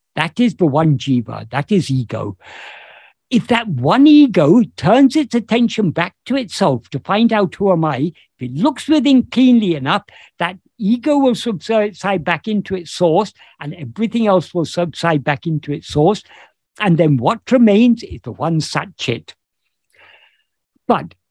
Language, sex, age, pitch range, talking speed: English, male, 60-79, 150-225 Hz, 160 wpm